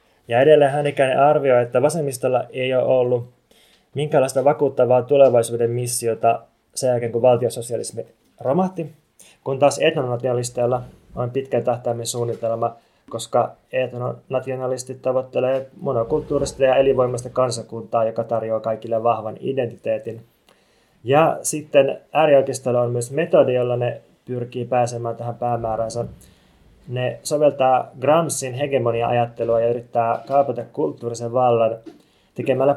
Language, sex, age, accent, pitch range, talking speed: Finnish, male, 20-39, native, 120-135 Hz, 110 wpm